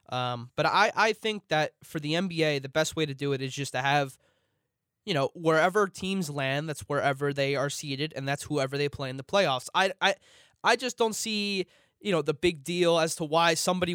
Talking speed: 225 wpm